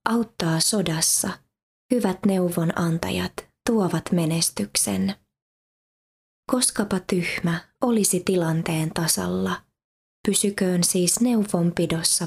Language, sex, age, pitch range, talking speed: Finnish, female, 20-39, 170-205 Hz, 70 wpm